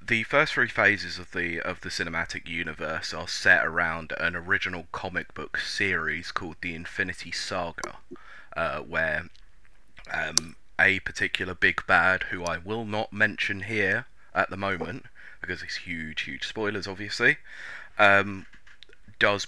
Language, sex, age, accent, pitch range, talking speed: English, male, 20-39, British, 85-100 Hz, 140 wpm